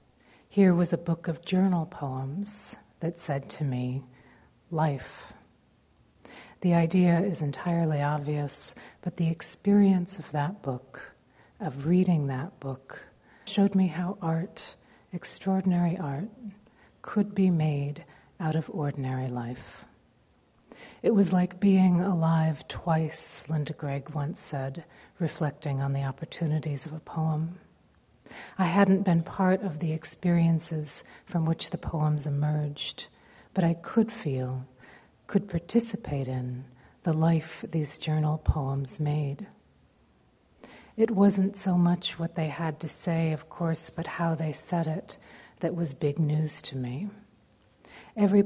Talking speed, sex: 130 wpm, female